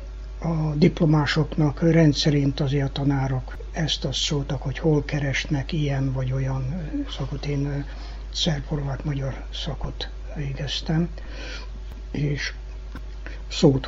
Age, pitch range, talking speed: 60-79, 130-155 Hz, 100 wpm